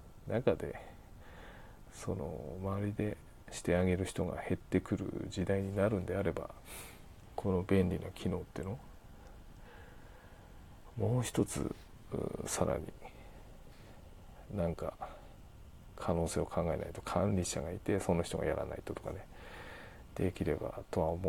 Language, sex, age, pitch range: Japanese, male, 40-59, 90-105 Hz